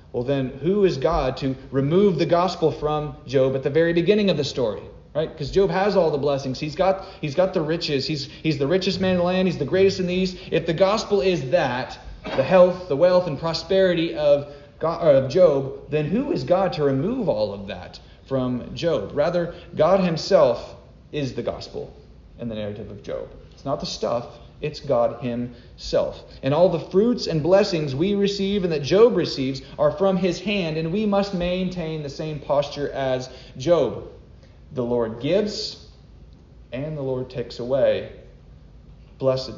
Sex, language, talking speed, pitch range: male, English, 190 wpm, 130-180 Hz